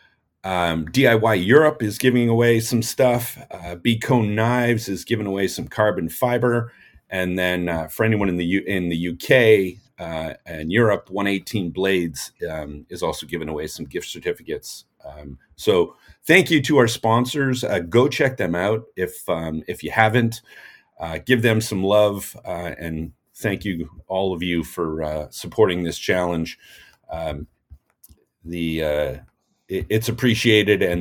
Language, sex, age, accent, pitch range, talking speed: English, male, 40-59, American, 85-120 Hz, 155 wpm